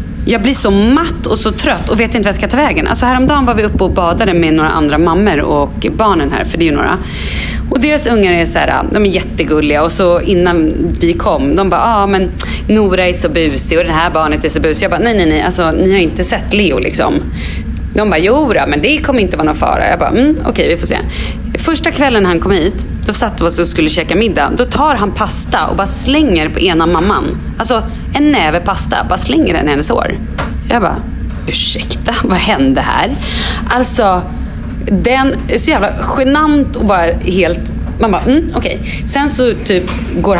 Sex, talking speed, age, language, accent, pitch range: female, 225 wpm, 30-49, Swedish, native, 155-240 Hz